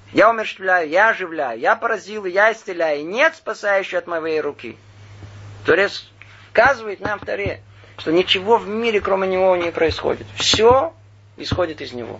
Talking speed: 150 wpm